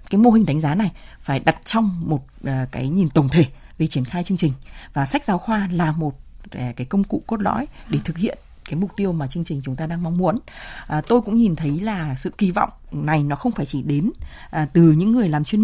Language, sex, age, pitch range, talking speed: Vietnamese, female, 20-39, 140-195 Hz, 240 wpm